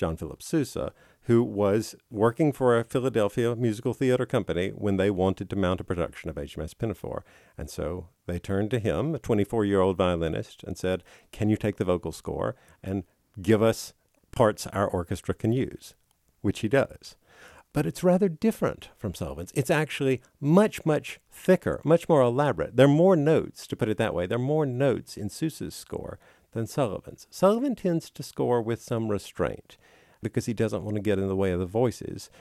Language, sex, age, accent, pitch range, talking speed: English, male, 50-69, American, 95-140 Hz, 185 wpm